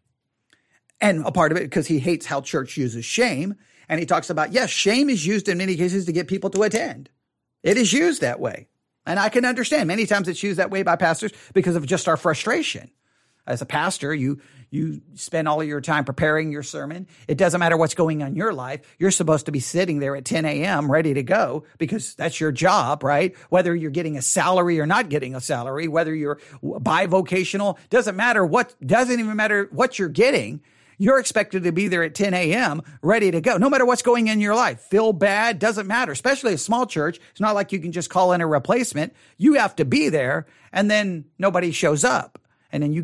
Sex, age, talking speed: male, 40-59, 225 wpm